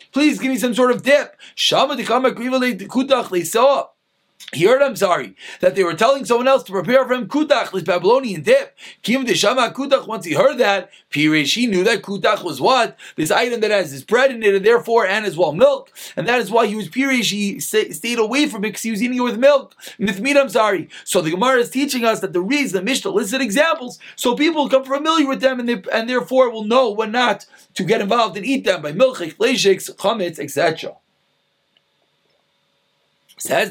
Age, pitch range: 30-49, 190-260 Hz